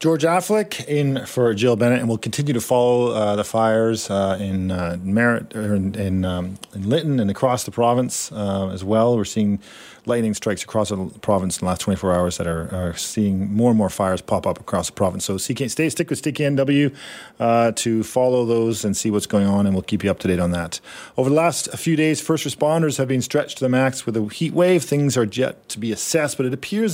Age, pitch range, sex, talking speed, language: 40-59, 105-145 Hz, male, 235 wpm, English